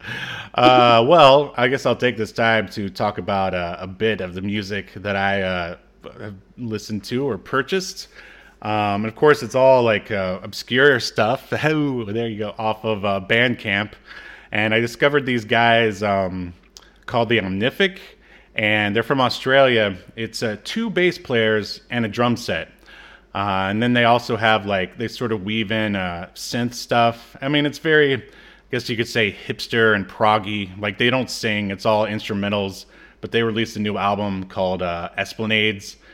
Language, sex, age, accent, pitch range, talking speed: English, male, 30-49, American, 100-120 Hz, 180 wpm